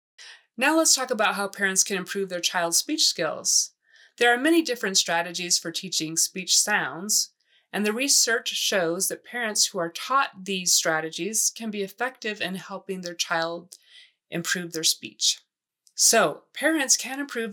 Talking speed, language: 160 wpm, English